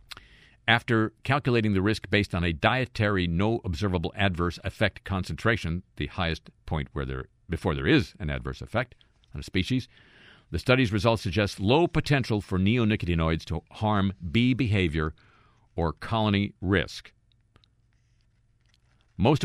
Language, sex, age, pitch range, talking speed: English, male, 50-69, 85-115 Hz, 130 wpm